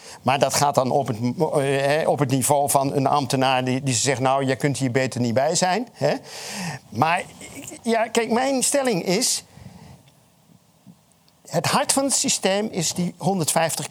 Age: 50-69